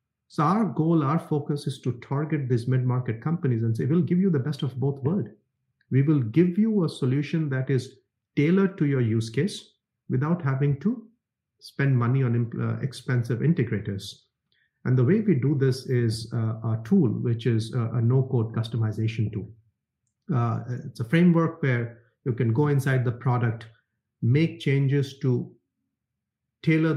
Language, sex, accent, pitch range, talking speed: English, male, Indian, 115-140 Hz, 165 wpm